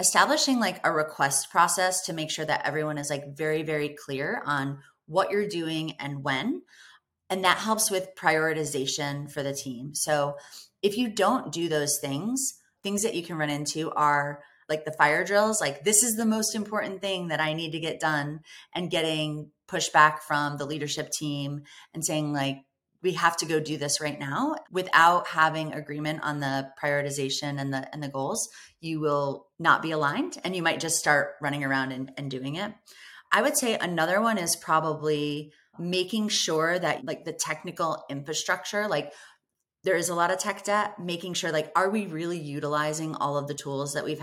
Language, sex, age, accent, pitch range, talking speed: English, female, 30-49, American, 145-180 Hz, 190 wpm